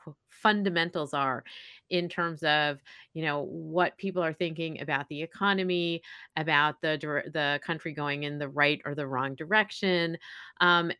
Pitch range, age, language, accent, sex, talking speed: 150-180 Hz, 30-49, English, American, female, 145 wpm